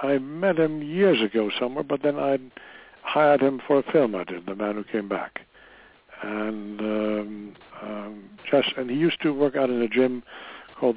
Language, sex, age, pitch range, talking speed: English, male, 60-79, 105-125 Hz, 190 wpm